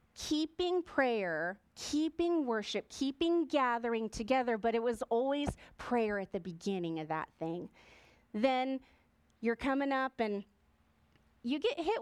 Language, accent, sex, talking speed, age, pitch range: English, American, female, 130 wpm, 30-49, 205-305 Hz